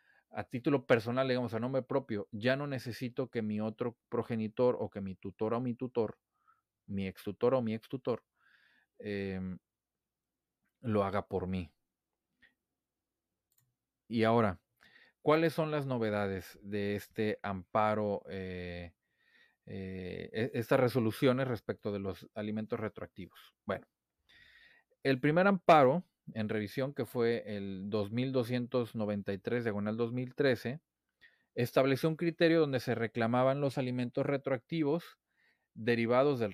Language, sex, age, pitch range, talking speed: Spanish, male, 40-59, 105-135 Hz, 120 wpm